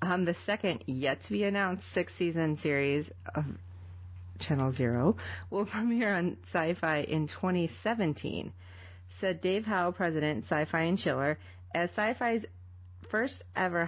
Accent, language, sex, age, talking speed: American, English, female, 30-49, 120 wpm